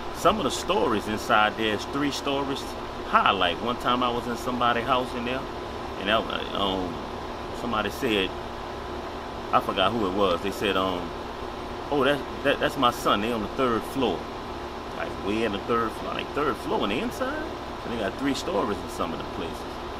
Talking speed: 195 wpm